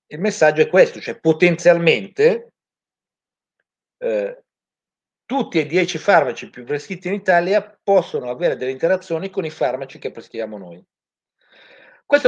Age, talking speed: 50-69, 125 wpm